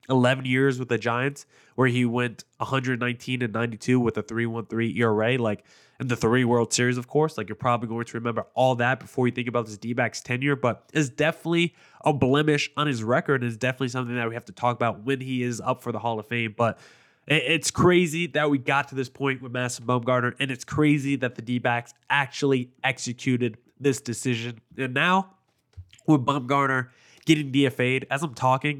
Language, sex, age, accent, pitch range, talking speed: English, male, 20-39, American, 115-135 Hz, 195 wpm